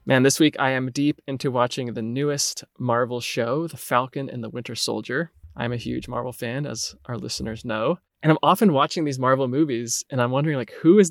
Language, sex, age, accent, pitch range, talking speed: English, male, 20-39, American, 120-150 Hz, 215 wpm